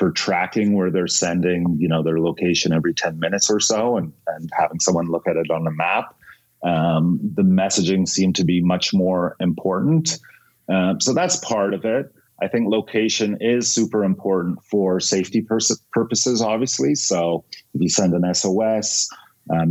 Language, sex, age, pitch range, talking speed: English, male, 30-49, 90-110 Hz, 165 wpm